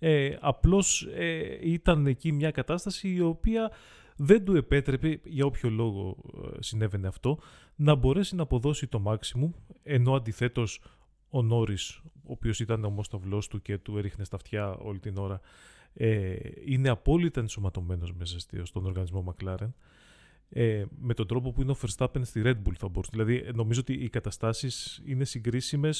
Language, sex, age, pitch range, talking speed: Greek, male, 30-49, 105-140 Hz, 145 wpm